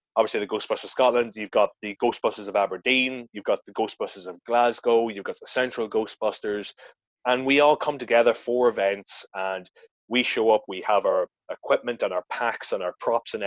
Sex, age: male, 30-49